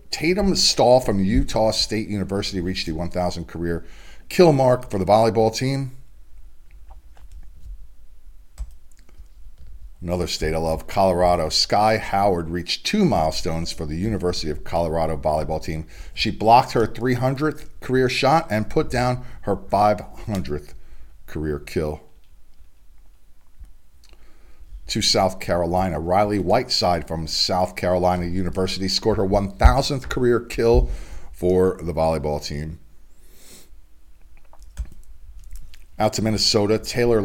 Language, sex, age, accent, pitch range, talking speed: English, male, 50-69, American, 75-100 Hz, 110 wpm